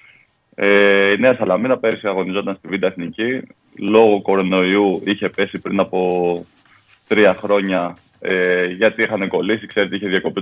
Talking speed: 140 wpm